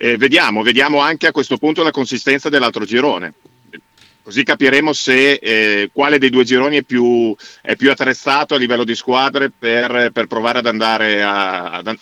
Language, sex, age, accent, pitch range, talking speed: Italian, male, 50-69, native, 110-130 Hz, 165 wpm